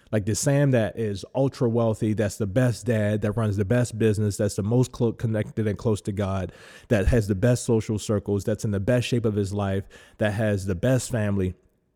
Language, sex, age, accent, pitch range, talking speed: English, male, 20-39, American, 110-140 Hz, 215 wpm